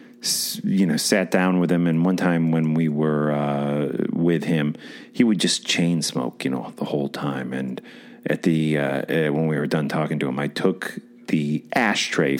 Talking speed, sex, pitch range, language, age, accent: 195 wpm, male, 75-90 Hz, English, 40-59, American